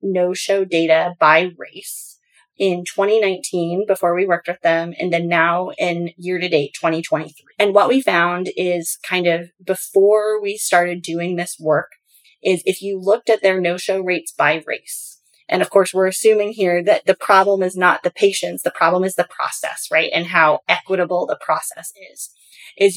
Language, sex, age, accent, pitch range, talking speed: English, female, 20-39, American, 170-195 Hz, 170 wpm